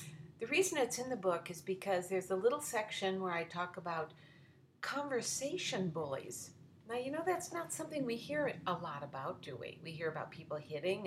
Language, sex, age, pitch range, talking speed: English, female, 50-69, 155-215 Hz, 195 wpm